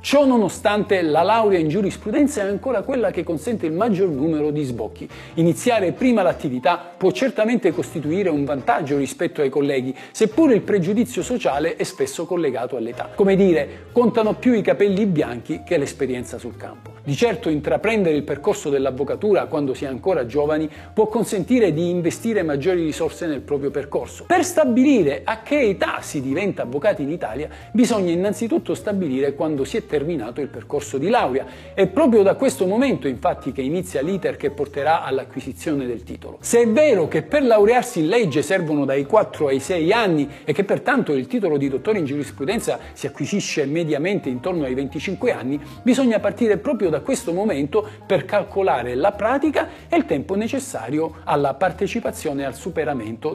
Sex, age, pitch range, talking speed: male, 50-69, 145-225 Hz, 170 wpm